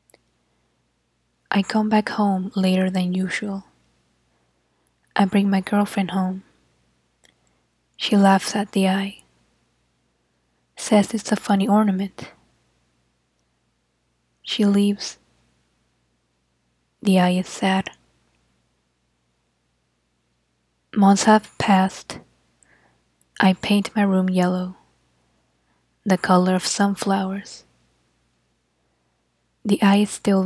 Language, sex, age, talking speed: English, female, 10-29, 85 wpm